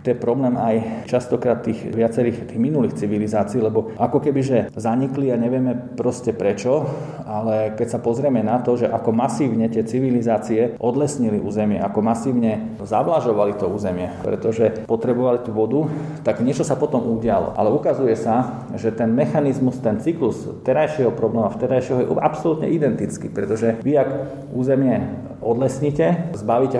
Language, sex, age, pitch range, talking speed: Slovak, male, 40-59, 115-135 Hz, 150 wpm